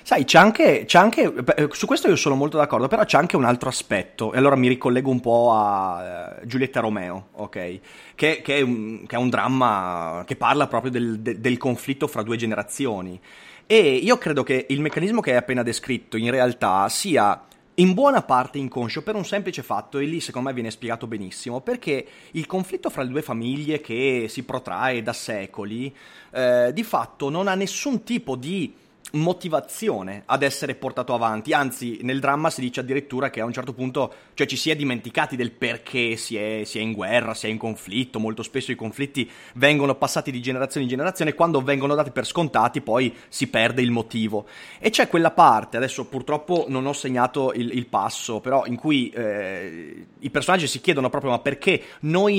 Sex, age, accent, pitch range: male, 30-49, native, 120-150 Hz